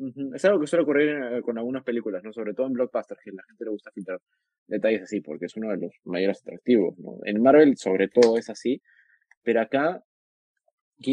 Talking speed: 200 wpm